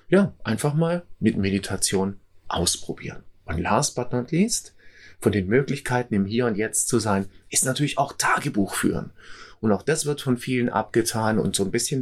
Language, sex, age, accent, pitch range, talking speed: German, male, 30-49, German, 105-145 Hz, 180 wpm